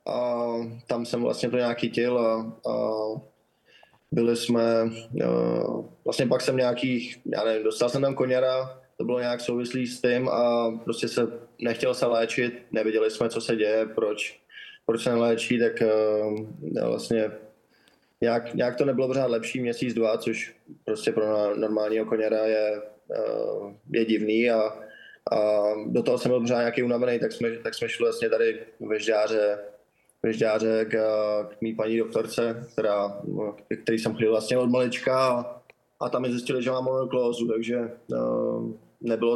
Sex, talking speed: male, 150 wpm